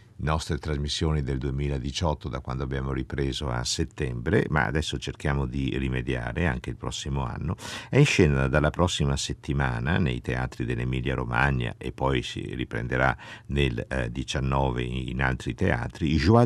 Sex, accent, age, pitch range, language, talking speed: male, native, 50-69, 65-90 Hz, Italian, 145 wpm